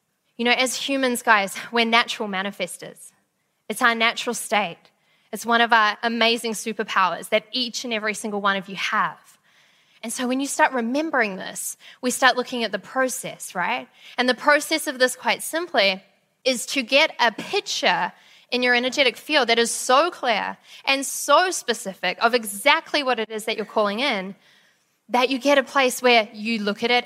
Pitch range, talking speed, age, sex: 220-260 Hz, 185 wpm, 10-29, female